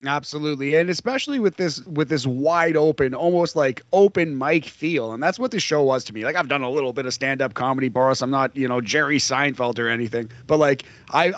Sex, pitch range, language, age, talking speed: male, 125-170 Hz, English, 30-49, 230 wpm